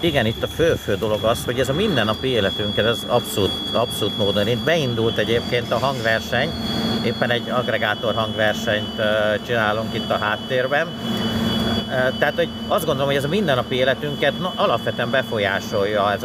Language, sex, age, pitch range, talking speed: Hungarian, male, 50-69, 110-130 Hz, 150 wpm